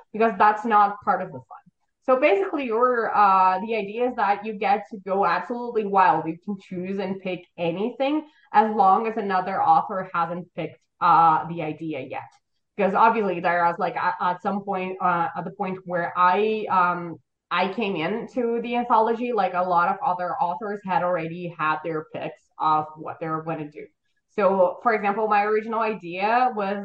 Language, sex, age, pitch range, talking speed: English, female, 20-39, 180-230 Hz, 185 wpm